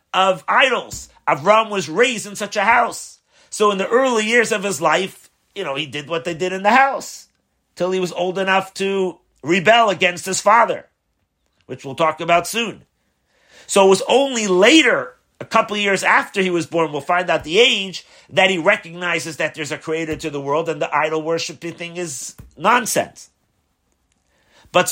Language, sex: English, male